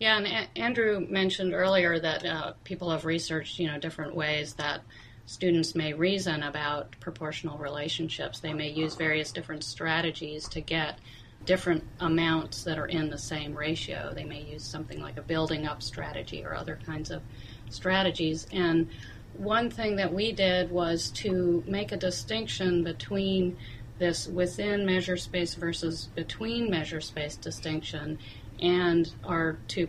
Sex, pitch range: female, 145-170 Hz